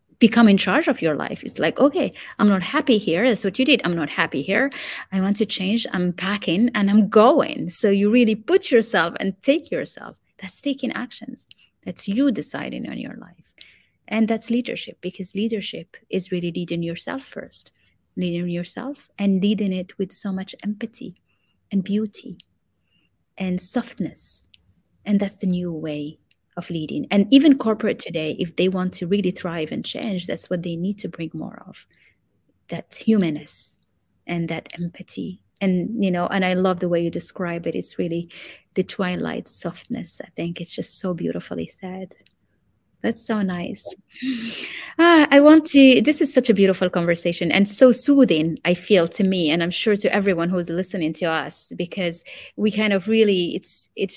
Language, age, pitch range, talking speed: English, 30-49, 175-220 Hz, 180 wpm